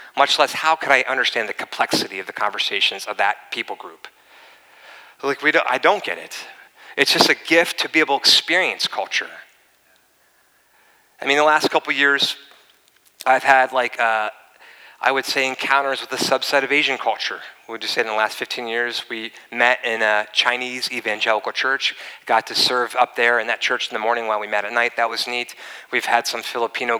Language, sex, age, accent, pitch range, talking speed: English, male, 30-49, American, 120-155 Hz, 200 wpm